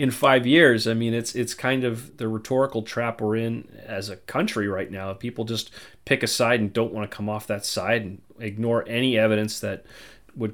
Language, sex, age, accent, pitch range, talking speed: English, male, 30-49, American, 105-130 Hz, 215 wpm